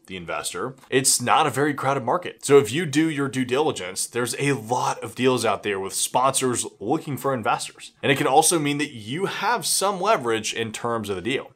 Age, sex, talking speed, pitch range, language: 20-39, male, 215 wpm, 120-150 Hz, English